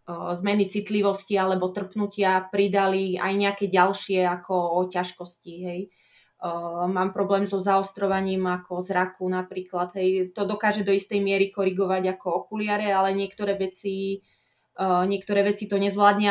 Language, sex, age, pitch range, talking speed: Slovak, female, 20-39, 185-205 Hz, 135 wpm